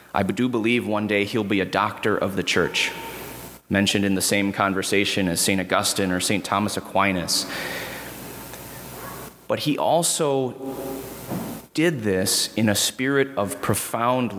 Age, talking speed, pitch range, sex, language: 30-49, 140 wpm, 100-125 Hz, male, English